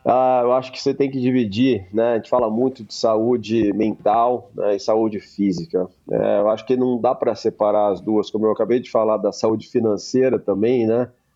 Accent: Brazilian